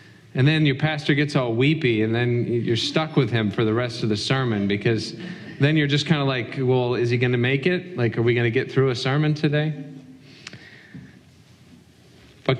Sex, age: male, 40-59